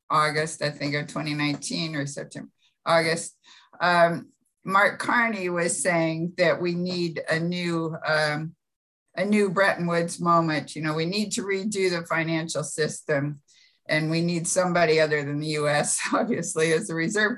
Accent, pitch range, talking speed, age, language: American, 155-180 Hz, 155 wpm, 50-69, English